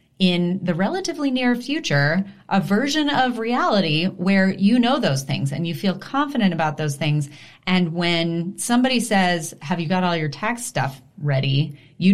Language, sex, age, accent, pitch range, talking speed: English, female, 30-49, American, 150-205 Hz, 170 wpm